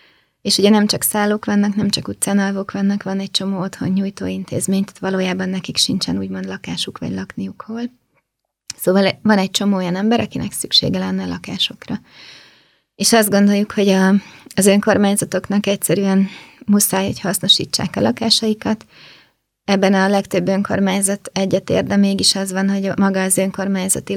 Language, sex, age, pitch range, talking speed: Hungarian, female, 20-39, 190-205 Hz, 150 wpm